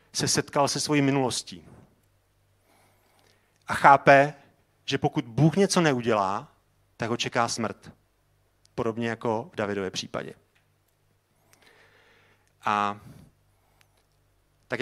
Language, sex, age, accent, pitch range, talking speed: Czech, male, 40-59, native, 105-140 Hz, 95 wpm